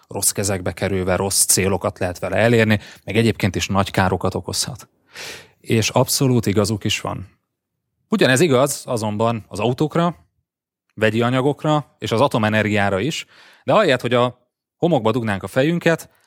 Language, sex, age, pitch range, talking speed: Hungarian, male, 30-49, 105-140 Hz, 140 wpm